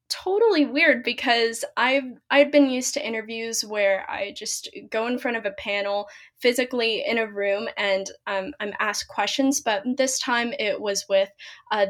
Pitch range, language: 195-265 Hz, English